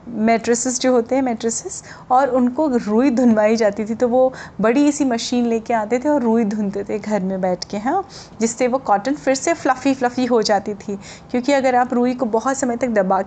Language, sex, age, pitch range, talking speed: Hindi, female, 30-49, 220-265 Hz, 215 wpm